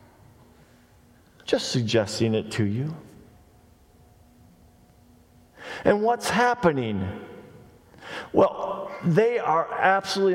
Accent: American